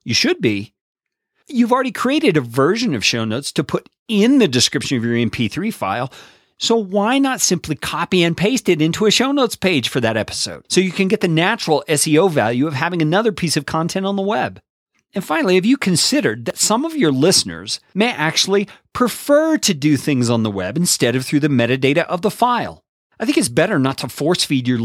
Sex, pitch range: male, 135-215 Hz